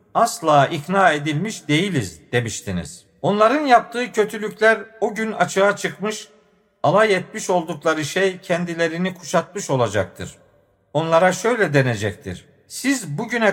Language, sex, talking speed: Turkish, male, 105 wpm